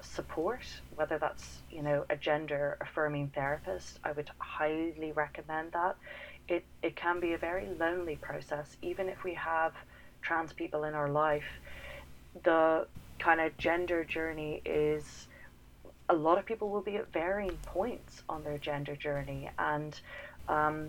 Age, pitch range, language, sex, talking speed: 30-49, 145-165 Hz, English, female, 150 wpm